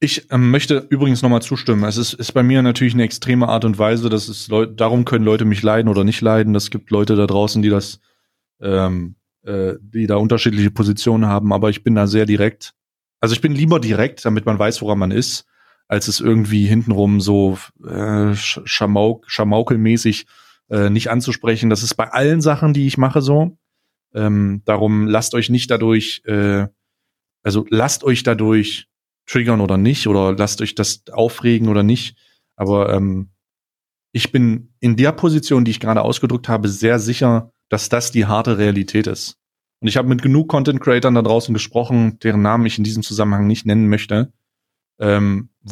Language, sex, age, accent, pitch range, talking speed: German, male, 30-49, German, 105-120 Hz, 180 wpm